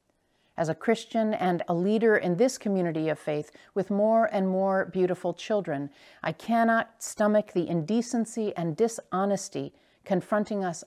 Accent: American